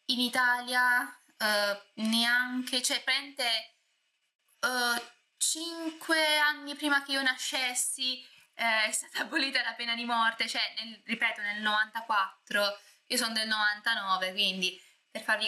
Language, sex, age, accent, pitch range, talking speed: Italian, female, 20-39, native, 210-260 Hz, 110 wpm